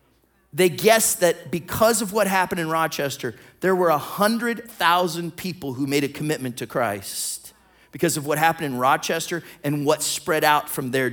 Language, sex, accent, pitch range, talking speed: English, male, American, 145-190 Hz, 165 wpm